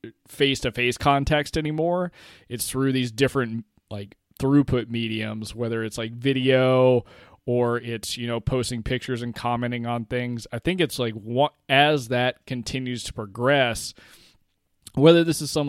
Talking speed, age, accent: 140 wpm, 20-39, American